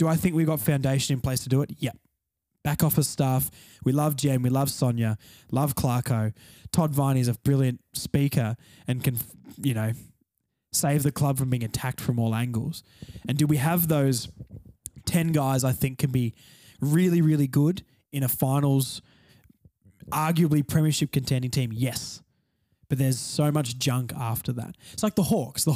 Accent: Australian